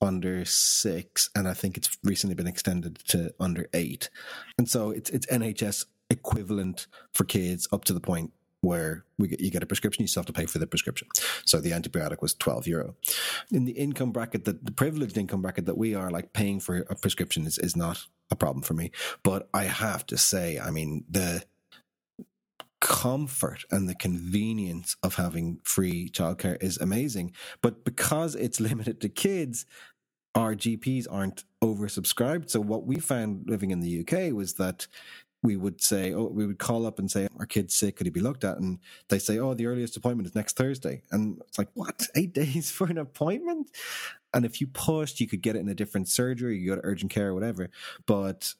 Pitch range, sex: 95-120 Hz, male